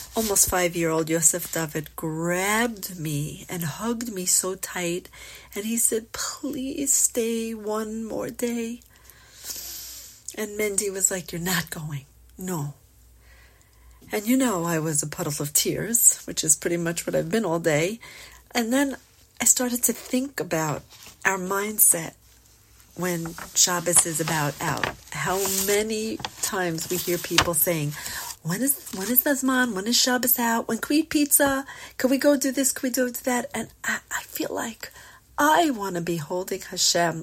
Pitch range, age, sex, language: 175-250 Hz, 40-59, female, English